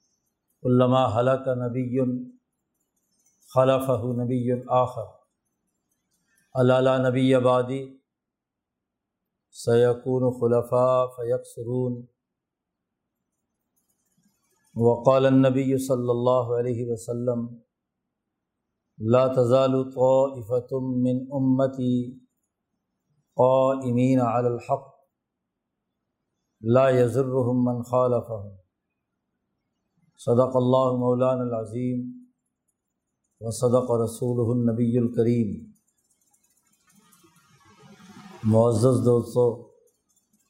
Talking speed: 55 wpm